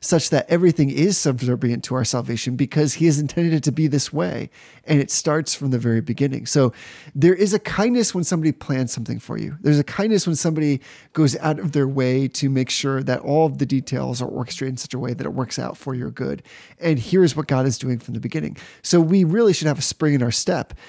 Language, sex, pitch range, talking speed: English, male, 130-165 Hz, 245 wpm